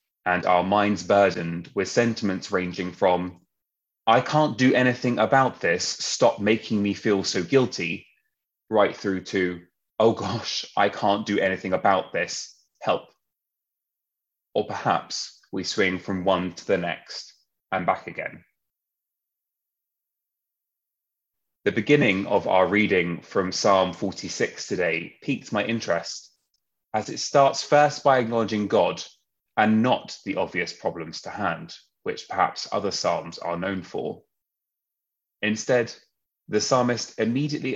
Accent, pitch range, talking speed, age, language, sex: British, 95-115 Hz, 130 wpm, 20-39, English, male